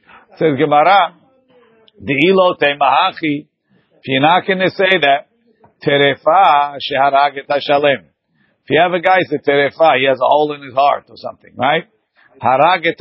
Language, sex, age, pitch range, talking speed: English, male, 50-69, 145-190 Hz, 150 wpm